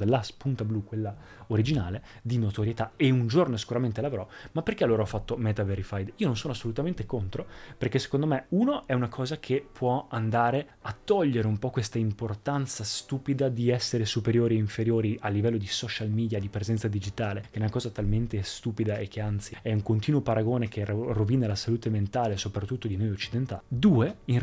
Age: 20-39